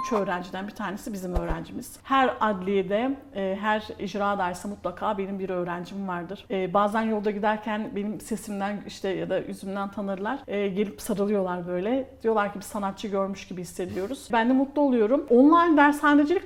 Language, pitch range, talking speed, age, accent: Turkish, 200-255 Hz, 150 wpm, 50-69, native